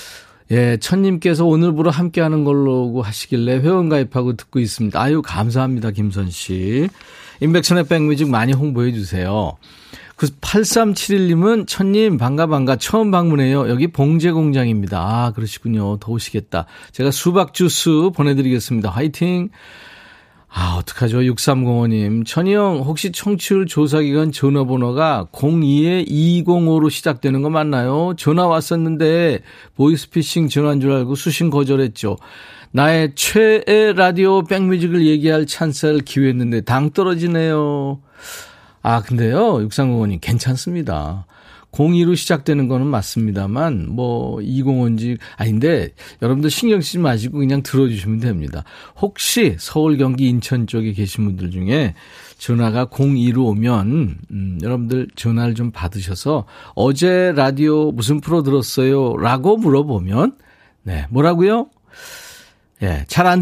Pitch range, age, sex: 120-170 Hz, 40-59, male